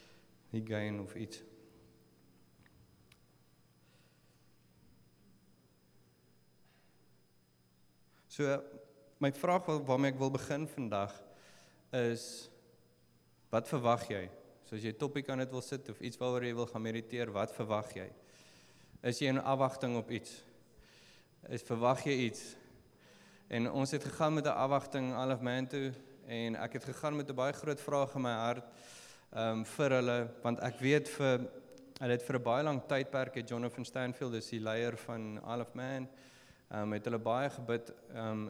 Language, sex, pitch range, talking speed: English, male, 110-130 Hz, 140 wpm